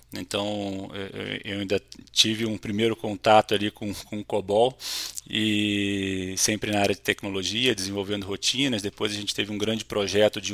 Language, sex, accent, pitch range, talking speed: Portuguese, male, Brazilian, 100-120 Hz, 160 wpm